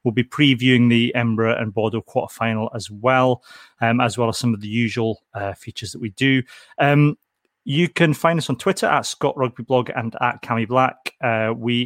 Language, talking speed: English, 200 wpm